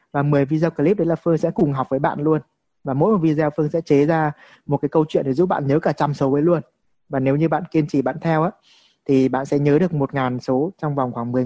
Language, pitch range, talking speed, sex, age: Vietnamese, 140-180 Hz, 285 wpm, male, 20-39